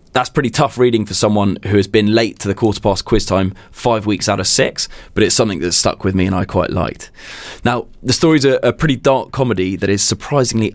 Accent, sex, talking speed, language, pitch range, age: British, male, 240 wpm, English, 95-115 Hz, 20-39